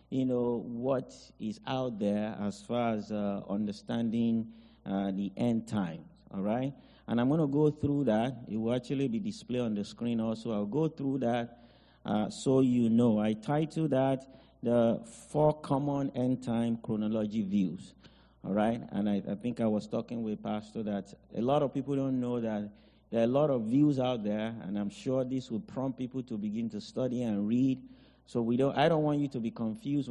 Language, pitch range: English, 105-130 Hz